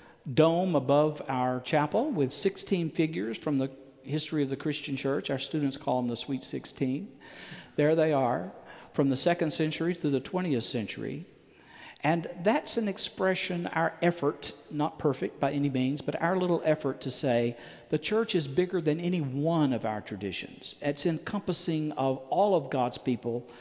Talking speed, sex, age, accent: 170 wpm, male, 60-79, American